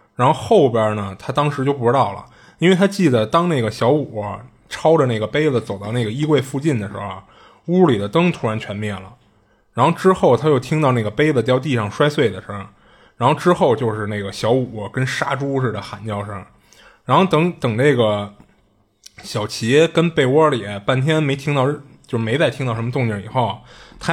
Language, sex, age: Chinese, male, 20-39